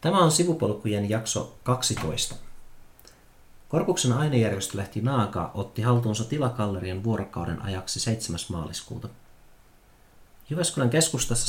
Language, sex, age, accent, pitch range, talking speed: Finnish, male, 40-59, native, 100-125 Hz, 90 wpm